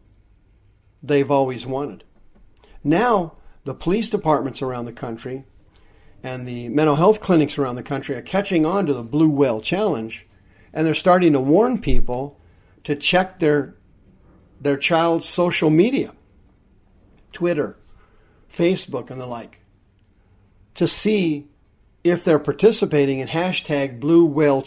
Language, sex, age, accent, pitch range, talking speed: English, male, 50-69, American, 110-155 Hz, 130 wpm